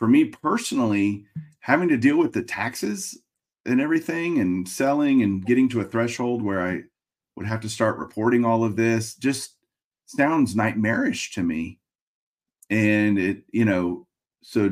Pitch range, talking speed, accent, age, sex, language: 95-130 Hz, 155 wpm, American, 40-59, male, English